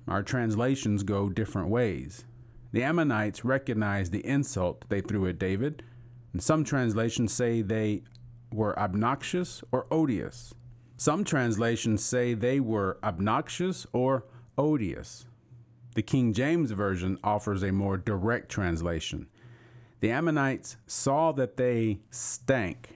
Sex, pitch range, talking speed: male, 105-125 Hz, 120 wpm